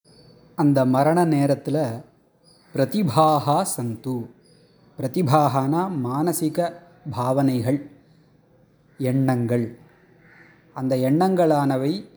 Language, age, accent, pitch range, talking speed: Tamil, 20-39, native, 130-170 Hz, 55 wpm